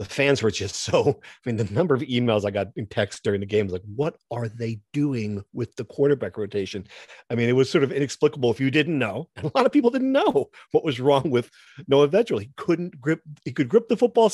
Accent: American